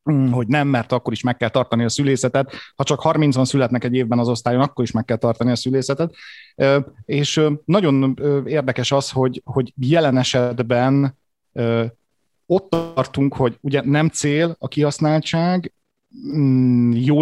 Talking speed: 145 wpm